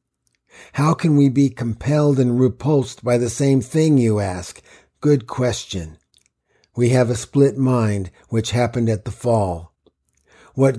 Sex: male